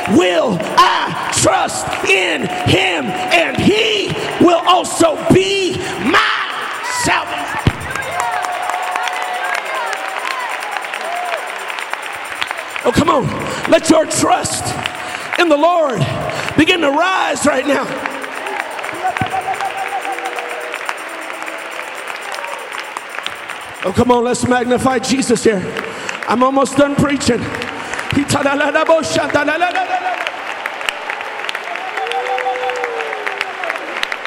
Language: English